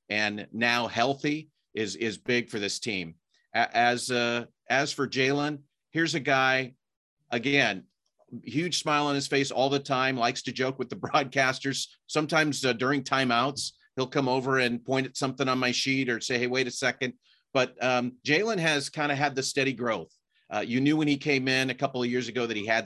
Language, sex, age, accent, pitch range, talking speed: English, male, 40-59, American, 110-135 Hz, 200 wpm